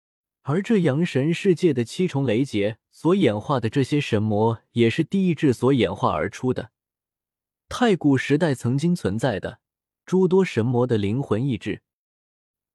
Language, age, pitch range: Chinese, 20-39, 110-160 Hz